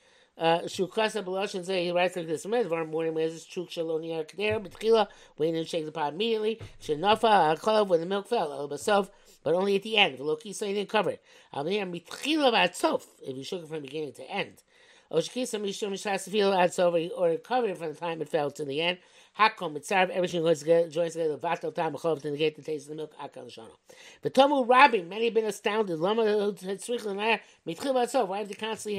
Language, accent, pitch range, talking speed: English, American, 165-220 Hz, 230 wpm